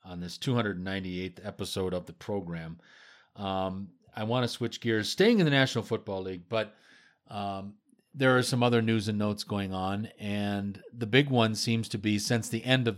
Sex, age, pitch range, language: male, 40-59, 100-125 Hz, English